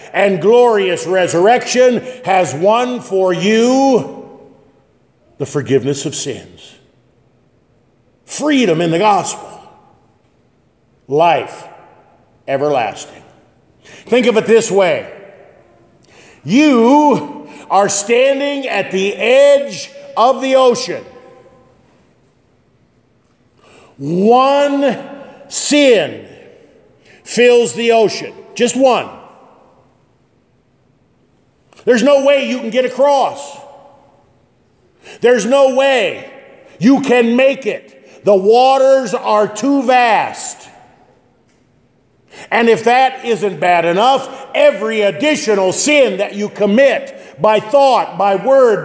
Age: 50-69